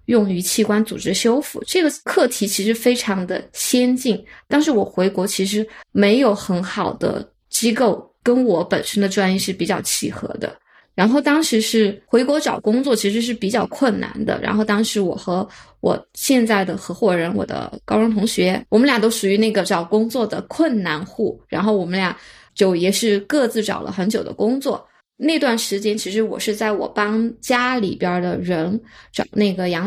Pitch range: 195-240 Hz